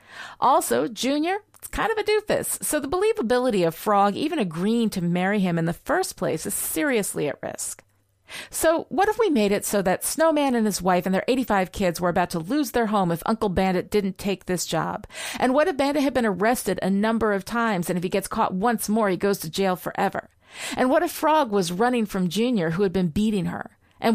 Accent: American